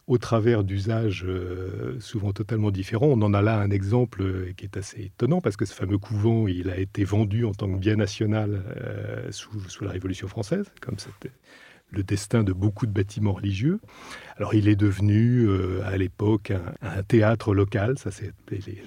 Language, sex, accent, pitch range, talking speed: French, male, French, 100-125 Hz, 180 wpm